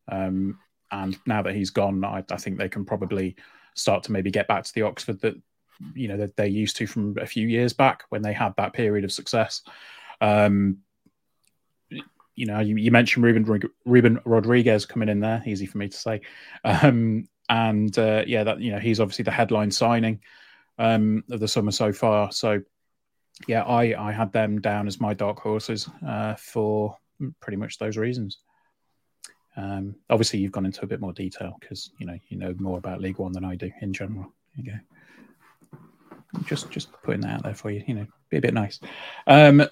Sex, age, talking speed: male, 20-39, 195 wpm